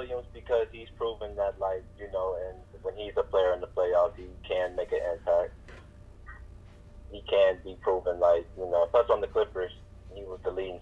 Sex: male